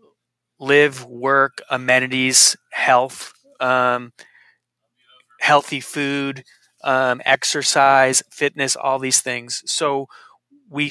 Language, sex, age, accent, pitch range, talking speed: English, male, 30-49, American, 125-145 Hz, 85 wpm